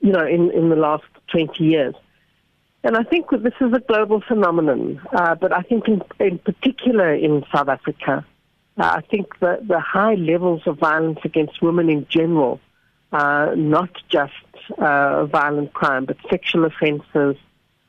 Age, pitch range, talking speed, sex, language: 60-79, 150-185 Hz, 165 wpm, female, English